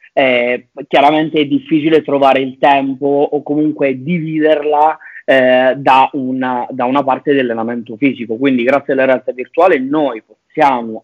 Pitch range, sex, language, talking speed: 120-145 Hz, male, Italian, 130 wpm